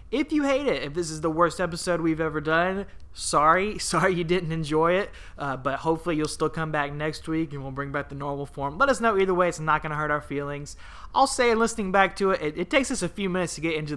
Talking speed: 270 wpm